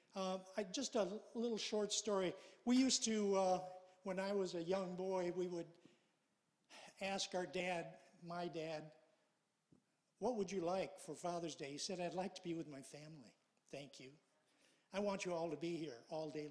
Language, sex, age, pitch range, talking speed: English, male, 50-69, 170-210 Hz, 180 wpm